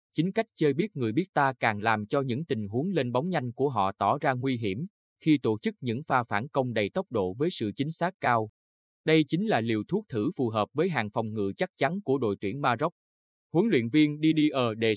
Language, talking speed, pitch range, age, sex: Vietnamese, 235 wpm, 110-150 Hz, 20-39, male